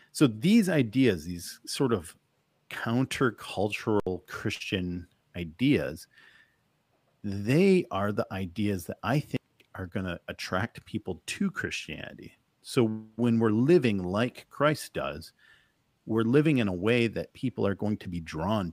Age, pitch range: 40-59, 100-135 Hz